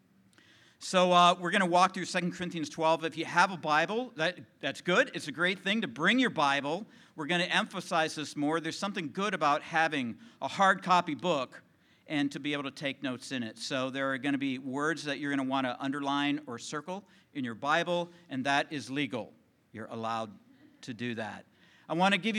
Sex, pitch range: male, 145-190 Hz